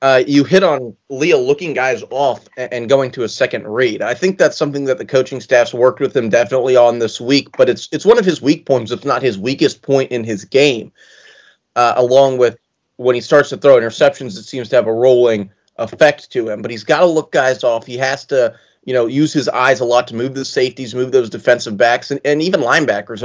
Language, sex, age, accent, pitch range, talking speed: English, male, 30-49, American, 120-145 Hz, 235 wpm